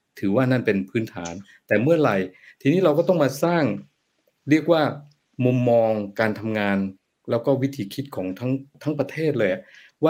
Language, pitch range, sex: Thai, 110-145 Hz, male